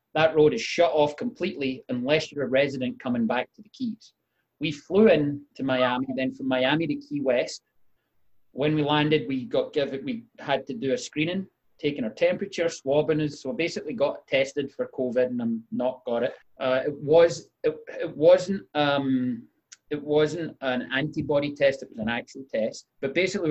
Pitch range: 130-175 Hz